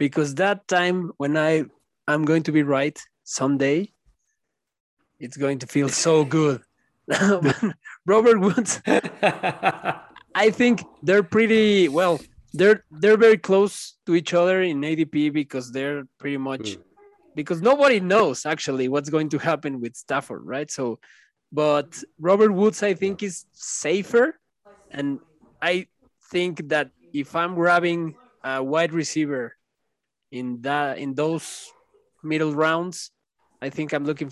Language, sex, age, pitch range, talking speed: Spanish, male, 20-39, 140-180 Hz, 135 wpm